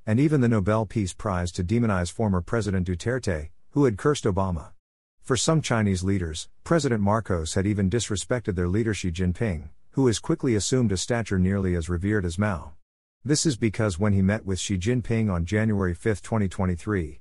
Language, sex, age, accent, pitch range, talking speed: English, male, 50-69, American, 90-115 Hz, 180 wpm